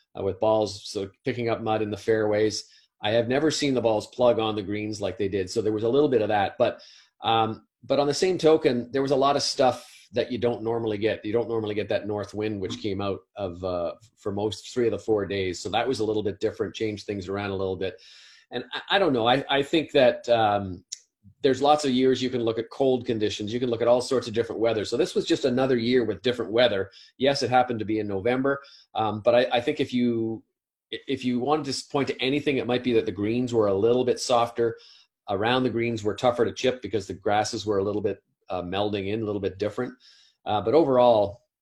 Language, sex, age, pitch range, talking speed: English, male, 30-49, 105-125 Hz, 250 wpm